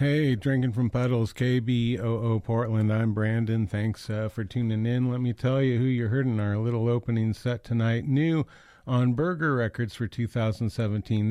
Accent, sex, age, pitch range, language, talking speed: American, male, 40-59, 110-125 Hz, English, 170 wpm